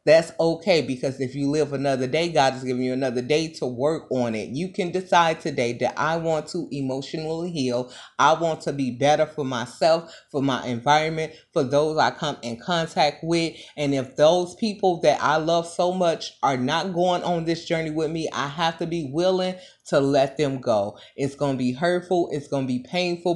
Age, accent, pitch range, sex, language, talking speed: 30-49, American, 145-180 Hz, female, English, 210 wpm